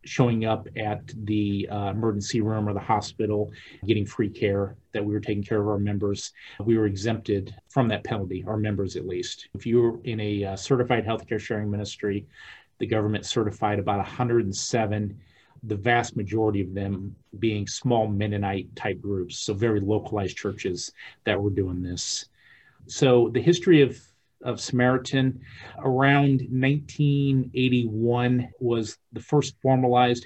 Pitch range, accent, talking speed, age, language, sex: 105-120 Hz, American, 150 wpm, 40-59, English, male